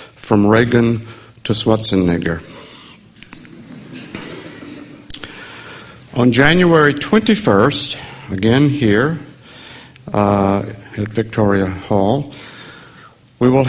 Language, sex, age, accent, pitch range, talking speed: English, male, 60-79, American, 105-140 Hz, 65 wpm